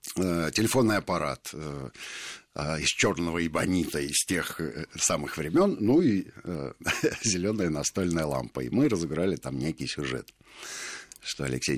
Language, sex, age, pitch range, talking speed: Russian, male, 60-79, 75-100 Hz, 110 wpm